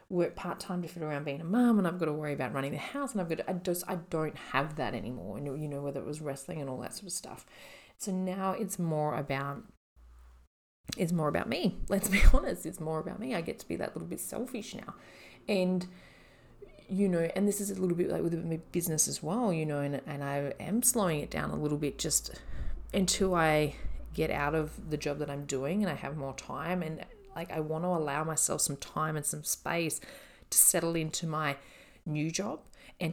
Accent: Australian